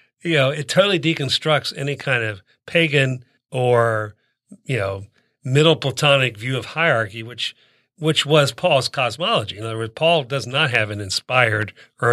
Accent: American